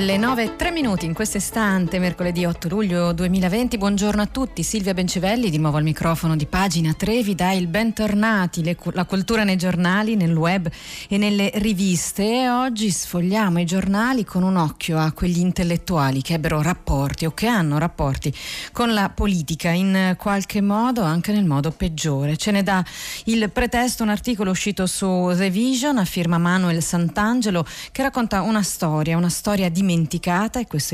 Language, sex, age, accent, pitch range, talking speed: Italian, female, 30-49, native, 165-215 Hz, 170 wpm